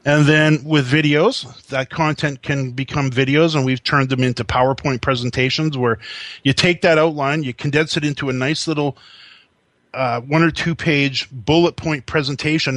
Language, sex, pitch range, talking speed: English, male, 125-155 Hz, 170 wpm